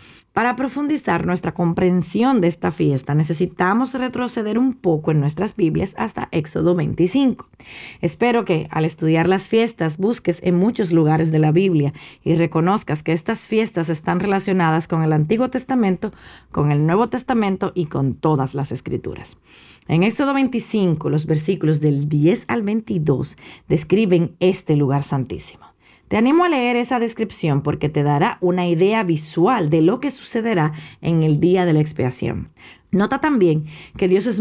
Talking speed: 155 wpm